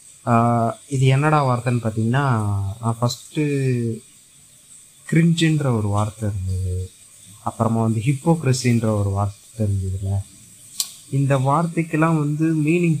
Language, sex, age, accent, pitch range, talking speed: Tamil, male, 20-39, native, 110-145 Hz, 90 wpm